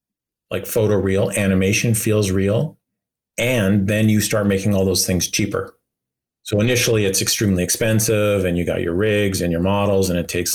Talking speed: 175 wpm